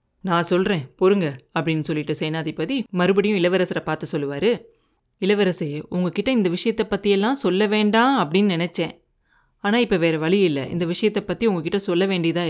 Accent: native